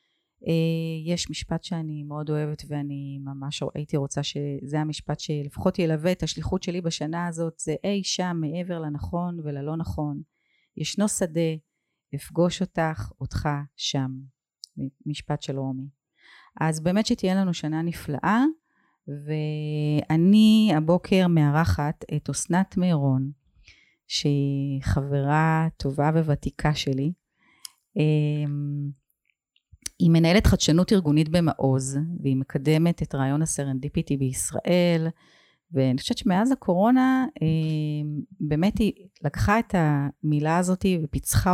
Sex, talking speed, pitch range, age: female, 110 wpm, 145-185 Hz, 30-49